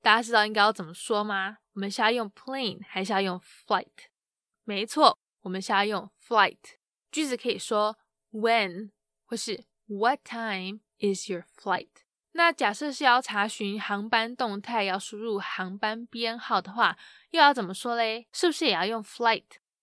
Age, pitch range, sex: 10-29, 205-240 Hz, female